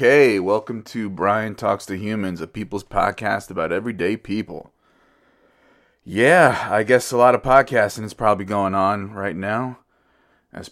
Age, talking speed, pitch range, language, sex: 20-39, 145 wpm, 90-110 Hz, English, male